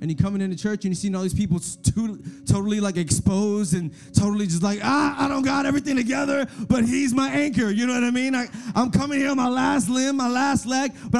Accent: American